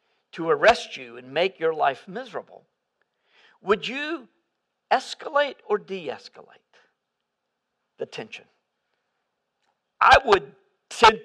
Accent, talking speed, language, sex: American, 95 wpm, English, male